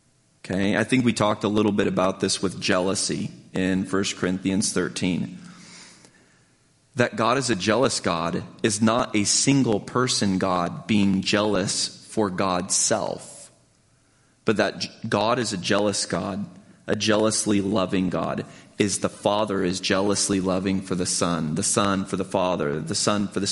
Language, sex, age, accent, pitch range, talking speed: English, male, 30-49, American, 95-110 Hz, 155 wpm